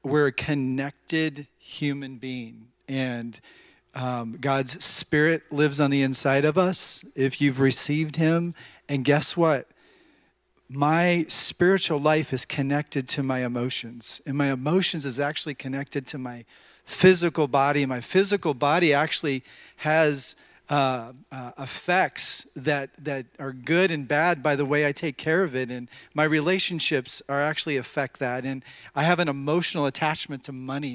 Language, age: English, 40-59